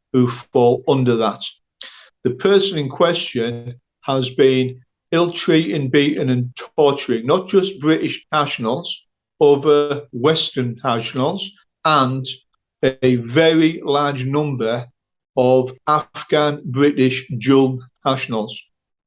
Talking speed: 100 wpm